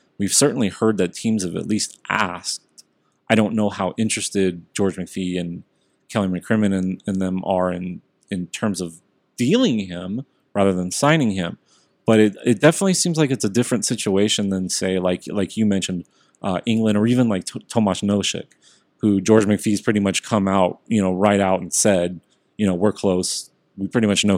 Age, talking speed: 30-49, 190 wpm